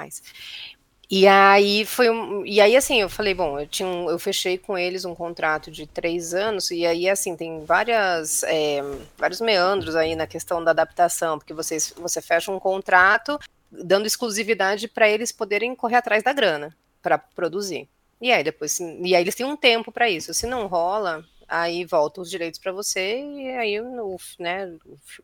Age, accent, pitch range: 30-49, Brazilian, 175-225 Hz